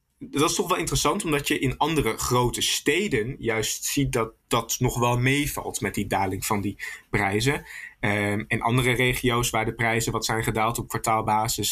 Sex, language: male, Dutch